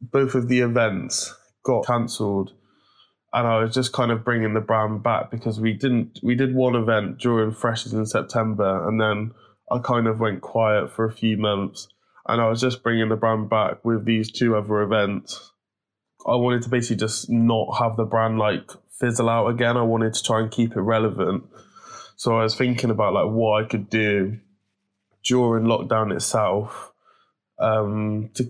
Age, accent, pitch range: 20-39, British, 105-115 Hz